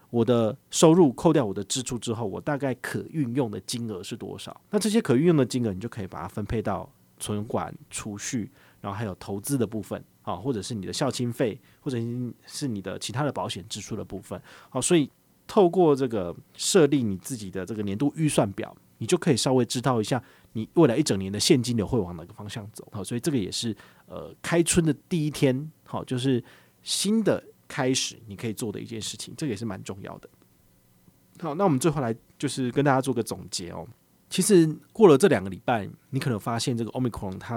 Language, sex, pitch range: Chinese, male, 105-140 Hz